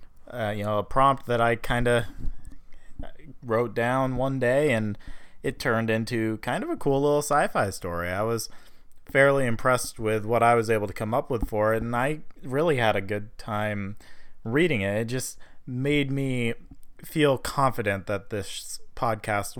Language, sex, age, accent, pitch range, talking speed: English, male, 20-39, American, 105-125 Hz, 180 wpm